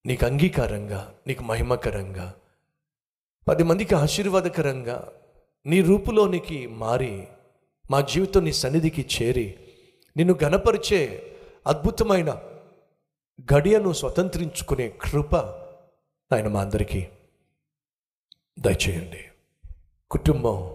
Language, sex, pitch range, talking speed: Telugu, male, 105-165 Hz, 70 wpm